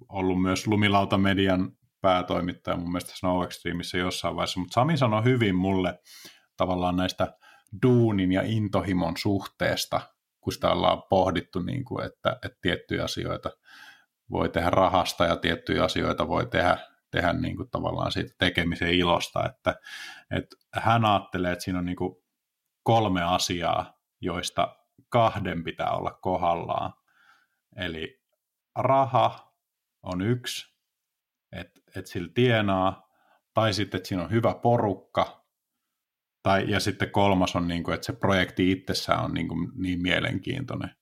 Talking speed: 115 wpm